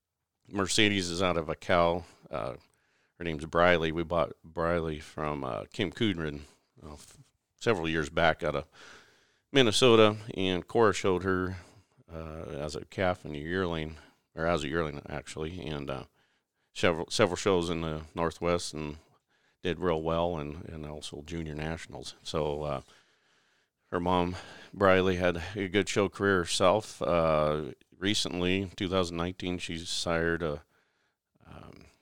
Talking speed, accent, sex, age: 140 wpm, American, male, 40-59